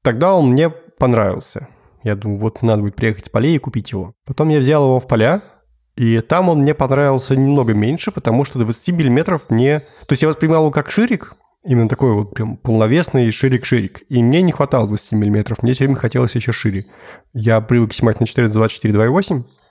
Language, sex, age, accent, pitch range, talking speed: Russian, male, 20-39, native, 115-140 Hz, 195 wpm